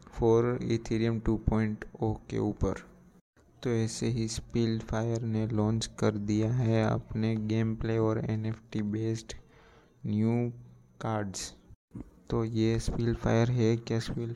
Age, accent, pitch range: 20-39, native, 105-115 Hz